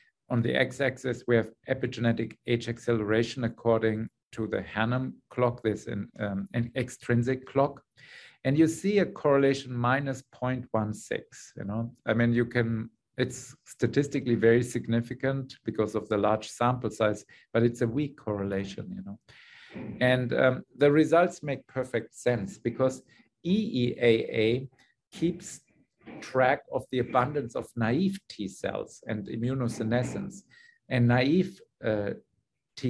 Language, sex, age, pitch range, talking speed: English, male, 50-69, 115-135 Hz, 130 wpm